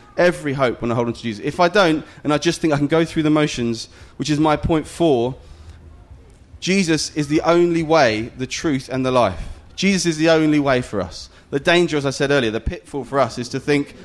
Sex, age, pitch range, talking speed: male, 30-49, 125-160 Hz, 240 wpm